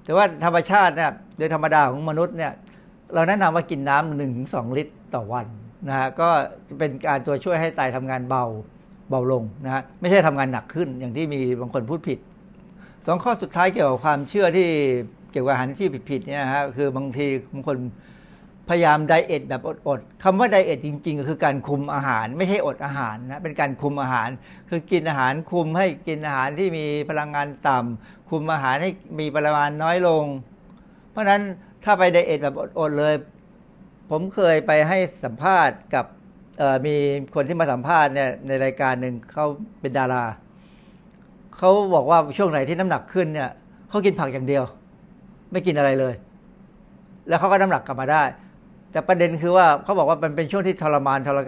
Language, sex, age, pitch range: Thai, male, 60-79, 140-190 Hz